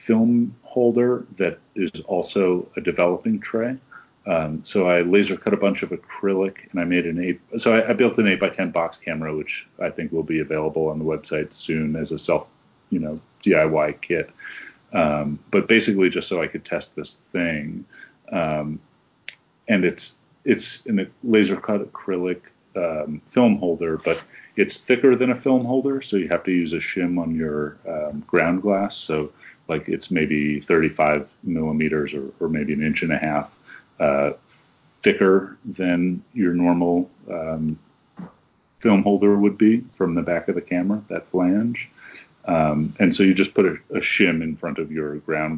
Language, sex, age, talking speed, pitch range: English, male, 40-59, 180 wpm, 80-100 Hz